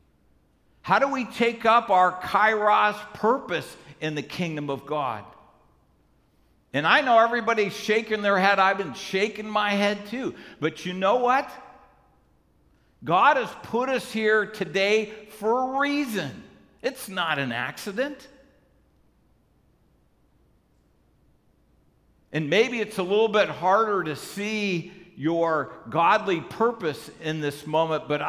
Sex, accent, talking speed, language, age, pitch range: male, American, 125 wpm, English, 60-79, 140-215 Hz